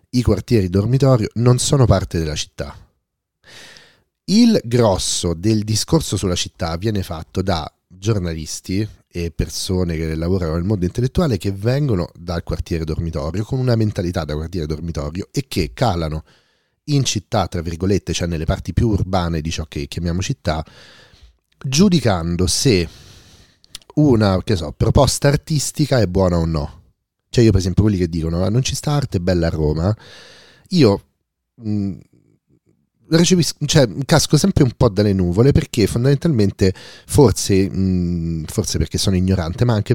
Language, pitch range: Italian, 85-115 Hz